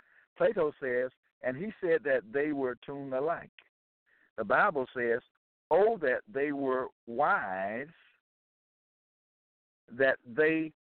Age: 60-79